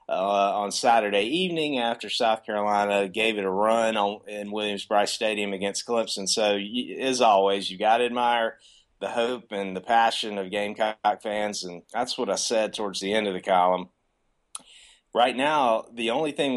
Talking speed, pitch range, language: 180 wpm, 95-110 Hz, English